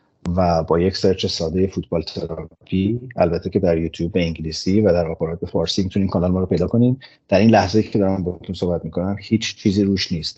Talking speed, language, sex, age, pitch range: 210 wpm, Persian, male, 30-49, 90-105 Hz